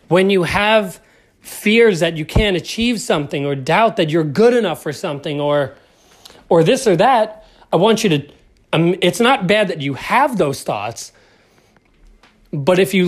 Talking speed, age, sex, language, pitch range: 175 wpm, 30-49, male, English, 155-210 Hz